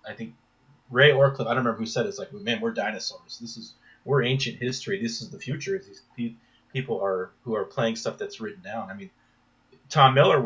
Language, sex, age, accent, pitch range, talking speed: English, male, 30-49, American, 115-145 Hz, 225 wpm